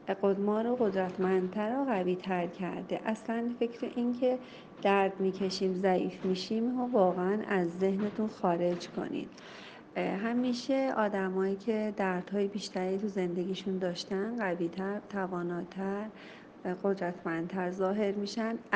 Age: 40-59